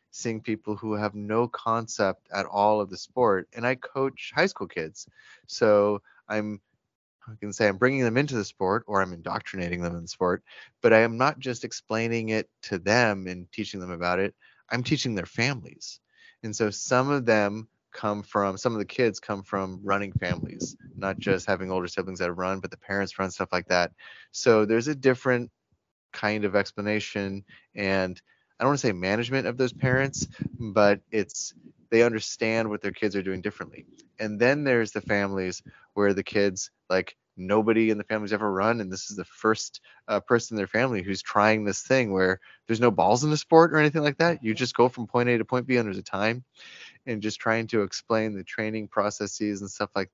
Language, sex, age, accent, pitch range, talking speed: English, male, 30-49, American, 100-115 Hz, 205 wpm